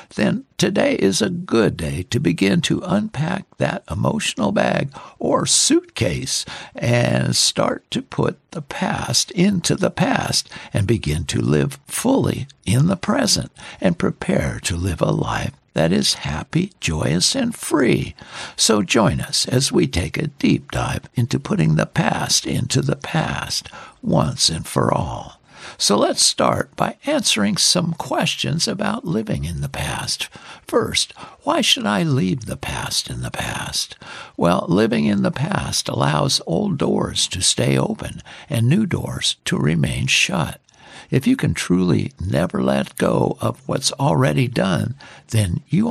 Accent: American